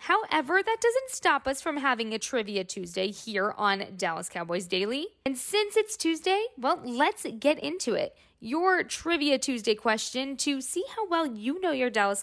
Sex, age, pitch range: female, 20-39, 230-350 Hz